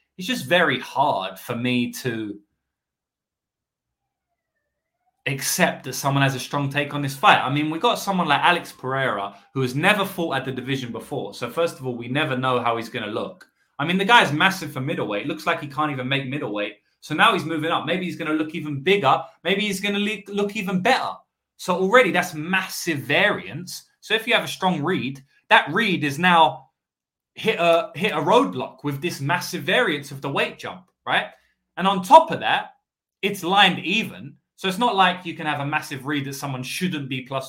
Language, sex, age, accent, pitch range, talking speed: English, male, 20-39, British, 130-180 Hz, 210 wpm